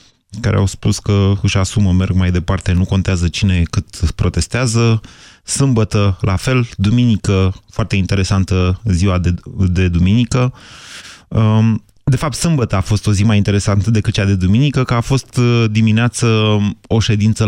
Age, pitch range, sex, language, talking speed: 30-49, 95-120 Hz, male, Romanian, 150 wpm